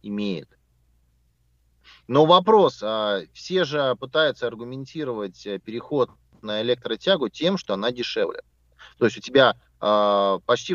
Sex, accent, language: male, native, Russian